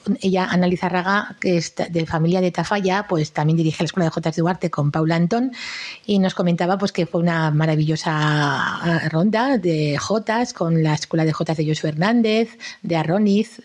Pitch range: 165-205 Hz